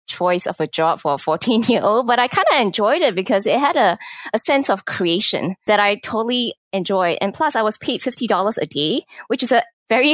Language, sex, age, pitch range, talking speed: English, female, 20-39, 170-225 Hz, 220 wpm